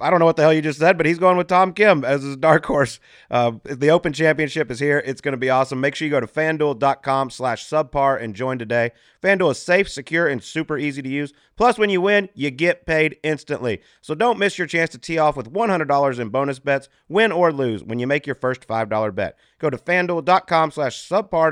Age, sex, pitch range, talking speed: 30-49, male, 120-160 Hz, 235 wpm